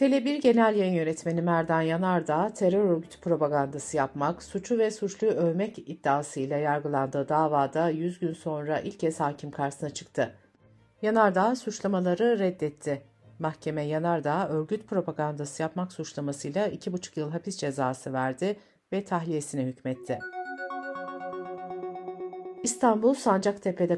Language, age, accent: Turkish, 60-79, native